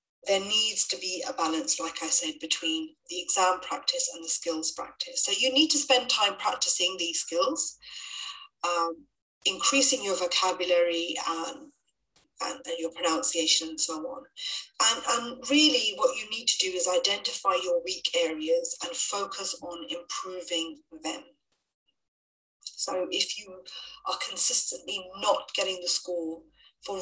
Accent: British